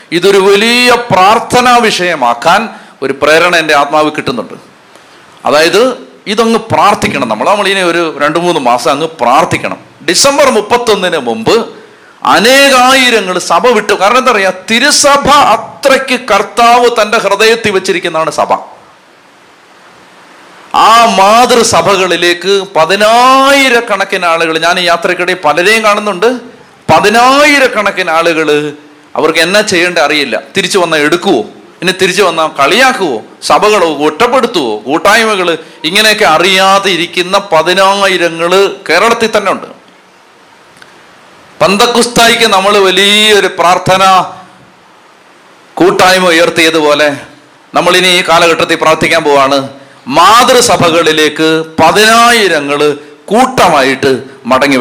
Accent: native